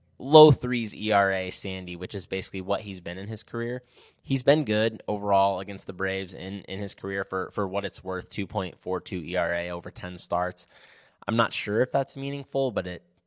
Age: 10-29